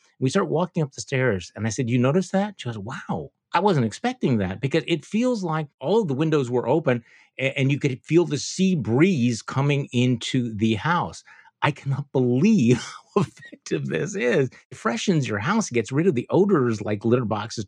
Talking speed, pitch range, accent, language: 200 wpm, 100-135 Hz, American, English